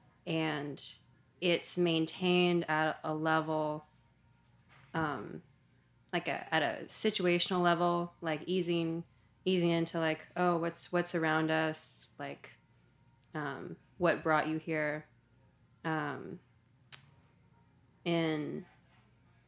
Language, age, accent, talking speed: English, 20-39, American, 95 wpm